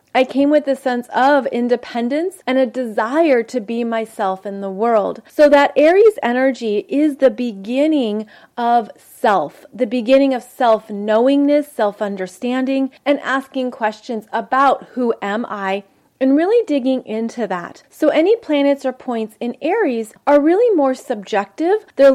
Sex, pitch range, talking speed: female, 220-270 Hz, 150 wpm